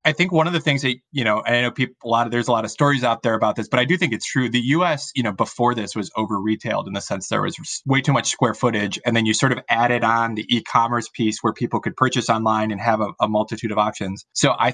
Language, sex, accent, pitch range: English, male, American, 110-125 Hz